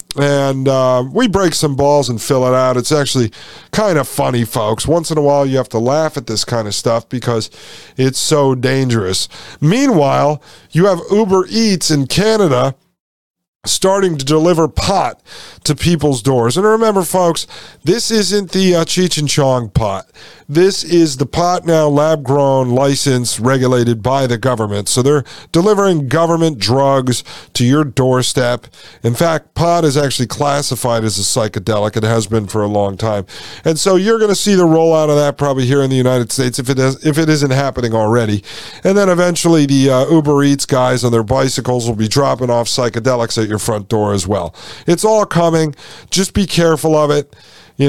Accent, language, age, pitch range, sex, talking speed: American, English, 50-69, 120-160 Hz, male, 185 wpm